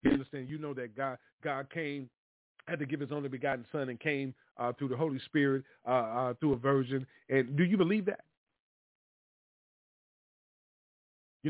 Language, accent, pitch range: English, American, 135-160 Hz